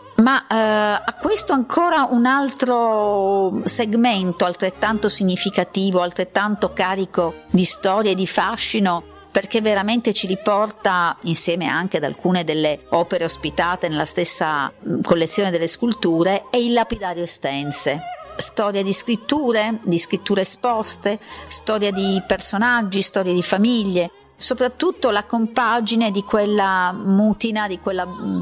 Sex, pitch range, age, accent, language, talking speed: female, 180-220 Hz, 50-69, native, Italian, 120 wpm